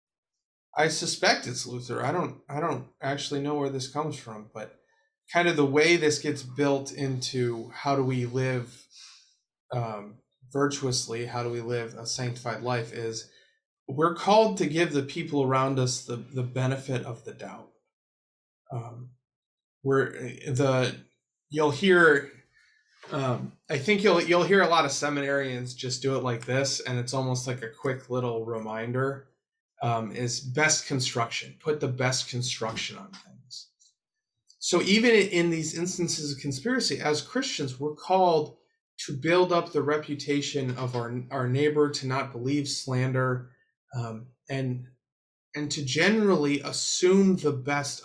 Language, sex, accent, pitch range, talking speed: English, male, American, 125-155 Hz, 150 wpm